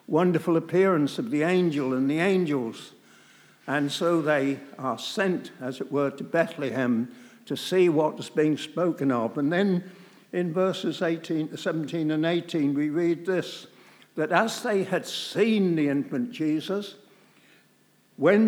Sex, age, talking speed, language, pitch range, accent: male, 60-79, 145 wpm, English, 145-180 Hz, British